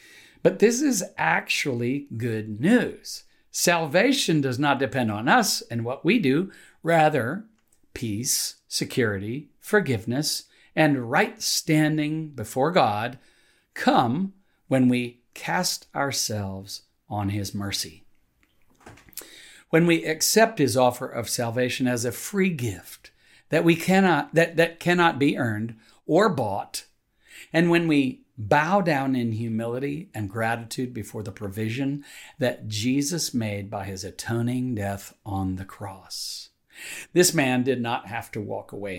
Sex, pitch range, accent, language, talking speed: male, 110-155 Hz, American, English, 130 wpm